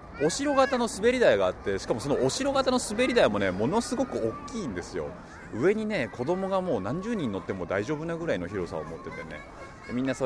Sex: male